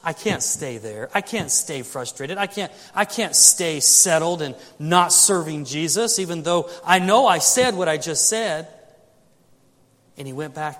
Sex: male